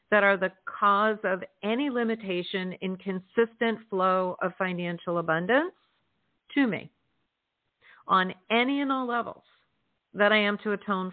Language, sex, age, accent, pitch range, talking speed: English, female, 50-69, American, 175-220 Hz, 135 wpm